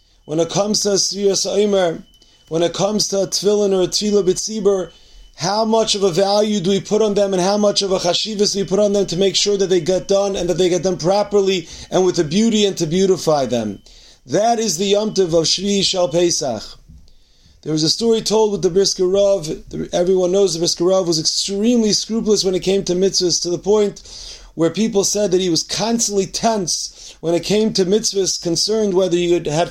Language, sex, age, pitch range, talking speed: English, male, 30-49, 175-205 Hz, 210 wpm